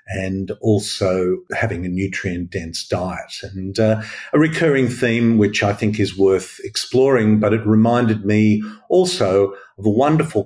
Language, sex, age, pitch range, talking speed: English, male, 50-69, 100-125 Hz, 150 wpm